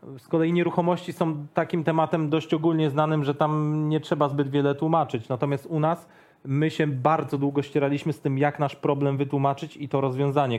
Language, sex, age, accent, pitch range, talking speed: Polish, male, 40-59, native, 135-165 Hz, 185 wpm